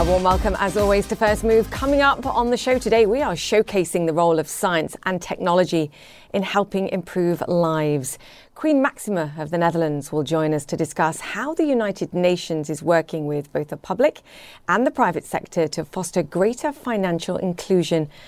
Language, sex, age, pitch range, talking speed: English, female, 40-59, 160-200 Hz, 185 wpm